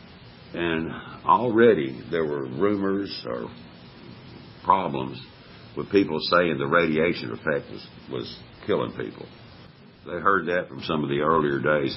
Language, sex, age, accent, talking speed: English, male, 60-79, American, 130 wpm